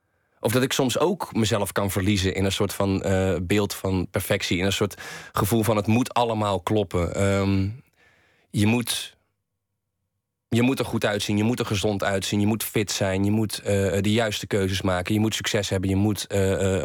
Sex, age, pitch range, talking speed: male, 20-39, 95-115 Hz, 200 wpm